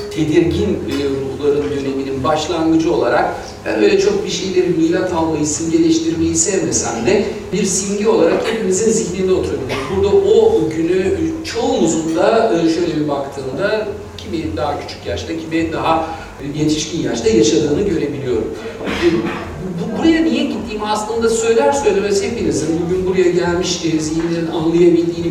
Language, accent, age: Turkish, native, 60-79